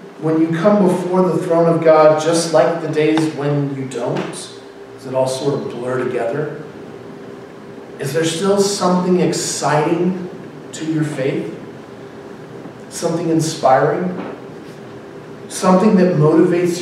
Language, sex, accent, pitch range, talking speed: English, male, American, 150-185 Hz, 125 wpm